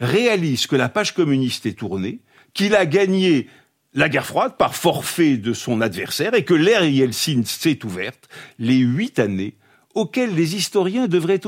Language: French